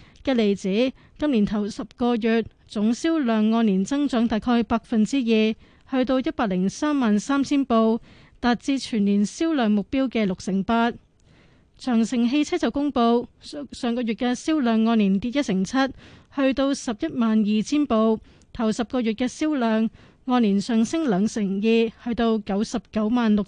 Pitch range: 220-265 Hz